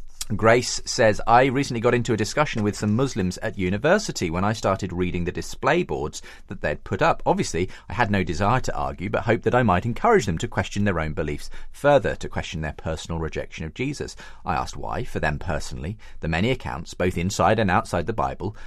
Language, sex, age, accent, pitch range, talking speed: English, male, 40-59, British, 85-115 Hz, 210 wpm